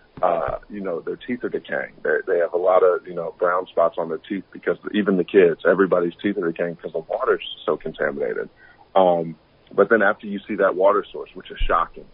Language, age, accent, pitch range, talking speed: English, 30-49, American, 90-110 Hz, 220 wpm